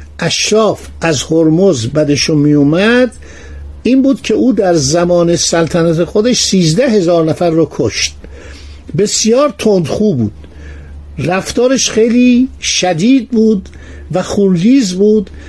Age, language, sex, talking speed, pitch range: 60-79, Persian, male, 110 wpm, 130-205 Hz